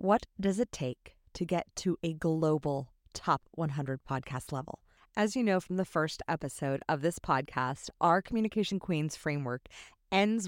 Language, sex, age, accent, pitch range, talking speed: English, female, 30-49, American, 145-200 Hz, 160 wpm